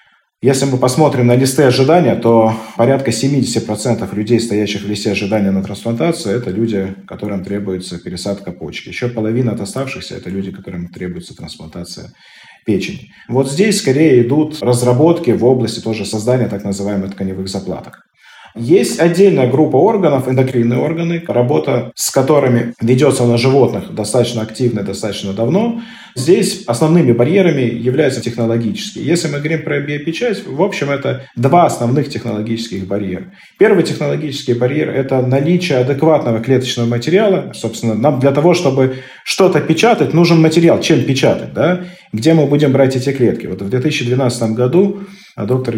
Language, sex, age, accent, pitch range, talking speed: Russian, male, 30-49, native, 110-155 Hz, 145 wpm